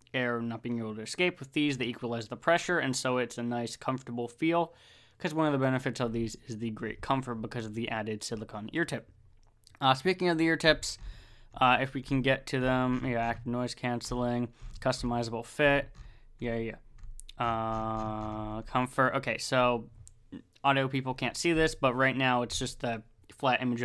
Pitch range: 115-135 Hz